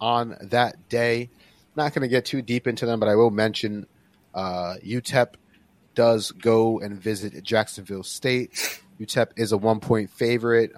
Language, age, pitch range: English, 30-49, 95-115 Hz